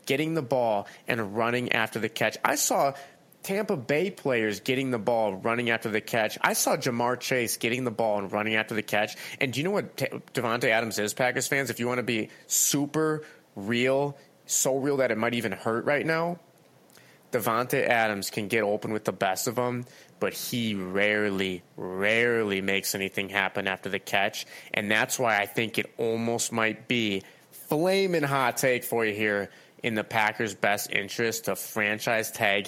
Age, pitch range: 30-49, 105-130 Hz